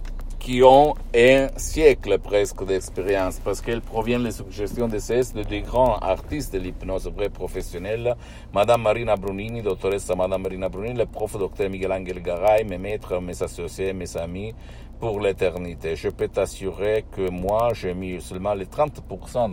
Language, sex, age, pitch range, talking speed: Italian, male, 60-79, 90-110 Hz, 165 wpm